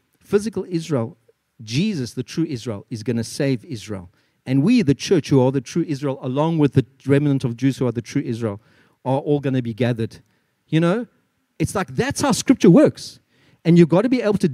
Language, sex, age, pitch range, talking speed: English, male, 40-59, 130-190 Hz, 215 wpm